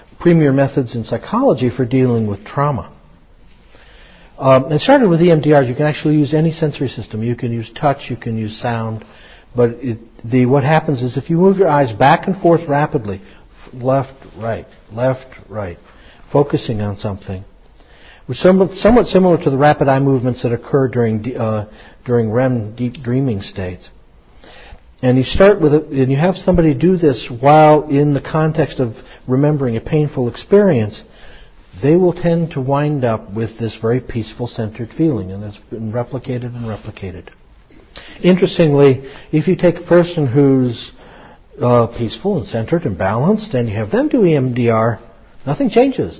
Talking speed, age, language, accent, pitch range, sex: 165 wpm, 60-79, English, American, 115-155 Hz, male